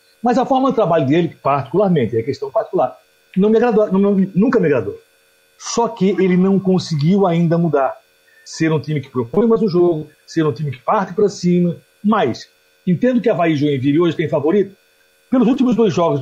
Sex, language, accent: male, Portuguese, Brazilian